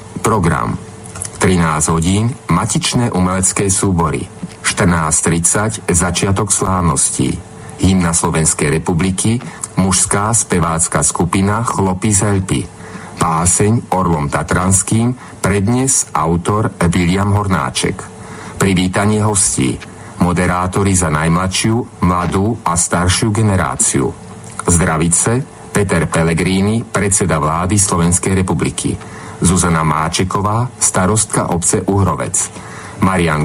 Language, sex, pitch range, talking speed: Slovak, male, 85-105 Hz, 85 wpm